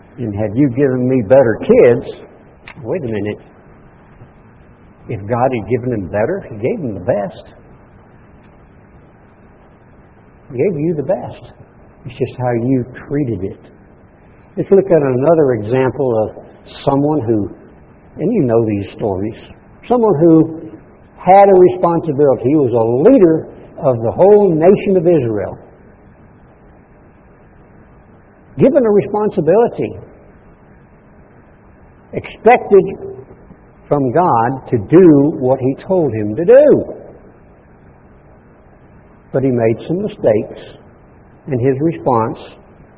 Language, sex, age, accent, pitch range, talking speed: English, male, 60-79, American, 125-170 Hz, 115 wpm